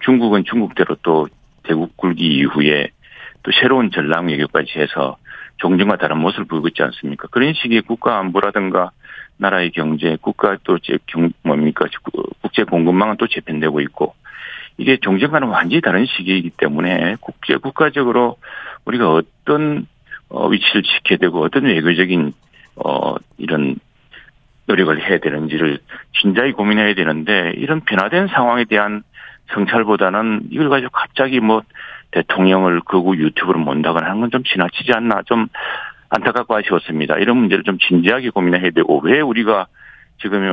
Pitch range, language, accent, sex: 85-115 Hz, Korean, native, male